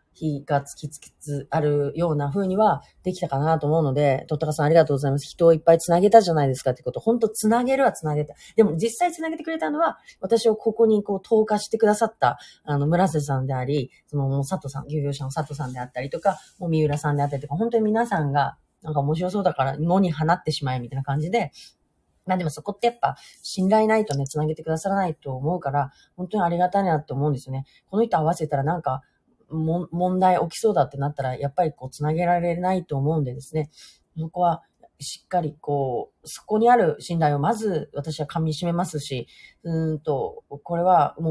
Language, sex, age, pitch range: Japanese, female, 30-49, 145-185 Hz